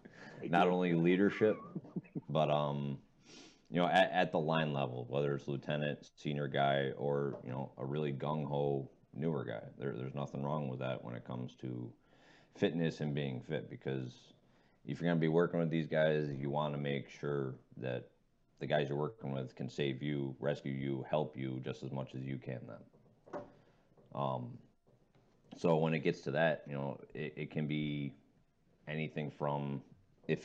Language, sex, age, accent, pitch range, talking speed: English, male, 30-49, American, 65-75 Hz, 175 wpm